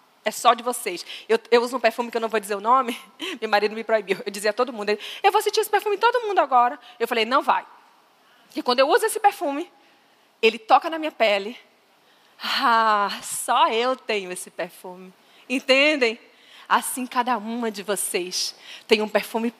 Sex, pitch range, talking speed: female, 225-310 Hz, 195 wpm